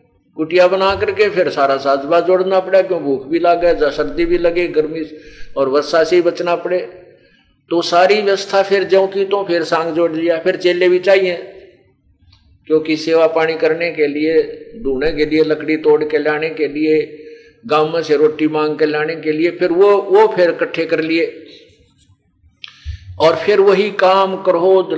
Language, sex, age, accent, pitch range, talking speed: Hindi, male, 50-69, native, 150-185 Hz, 175 wpm